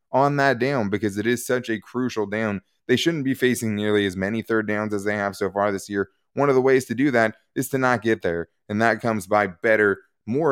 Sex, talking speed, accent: male, 250 wpm, American